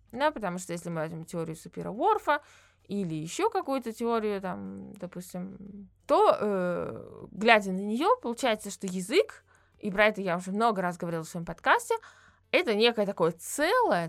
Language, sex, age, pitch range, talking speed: Russian, female, 20-39, 185-285 Hz, 160 wpm